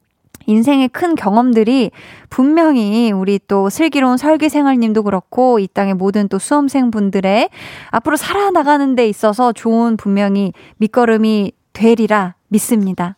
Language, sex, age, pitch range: Korean, female, 20-39, 200-275 Hz